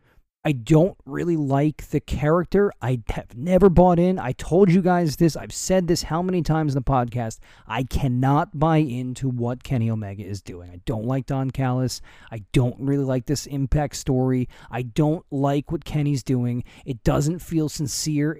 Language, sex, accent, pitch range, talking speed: English, male, American, 120-170 Hz, 185 wpm